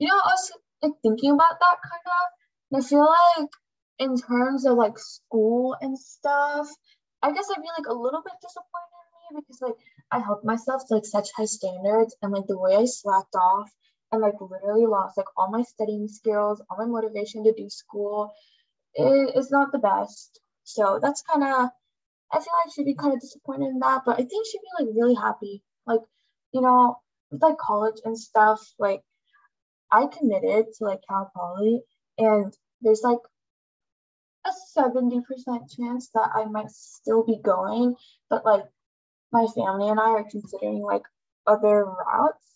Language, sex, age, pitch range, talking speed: English, female, 10-29, 210-280 Hz, 180 wpm